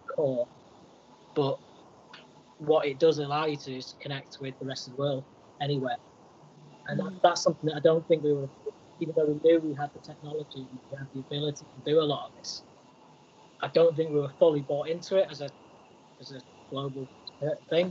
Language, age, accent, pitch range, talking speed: English, 20-39, British, 135-150 Hz, 205 wpm